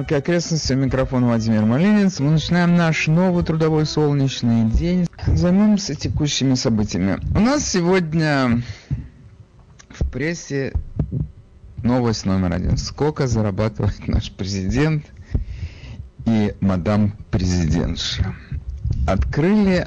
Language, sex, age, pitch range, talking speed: Russian, male, 50-69, 100-155 Hz, 90 wpm